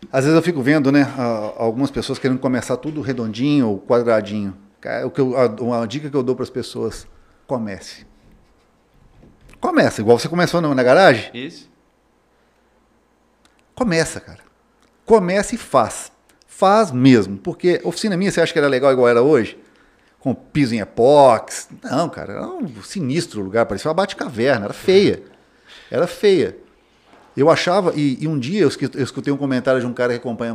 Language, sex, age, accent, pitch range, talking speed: Portuguese, male, 50-69, Brazilian, 120-165 Hz, 160 wpm